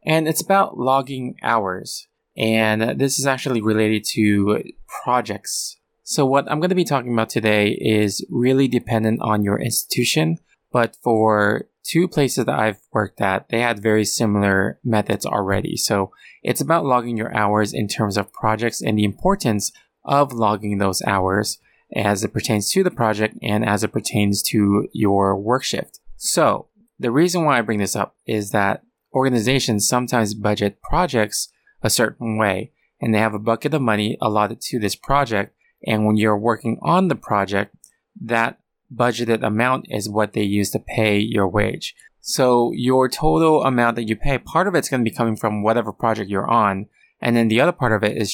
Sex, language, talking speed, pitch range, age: male, English, 180 wpm, 105-125 Hz, 20-39